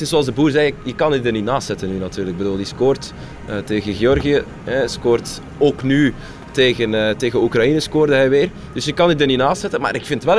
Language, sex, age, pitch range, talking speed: Dutch, male, 20-39, 120-155 Hz, 250 wpm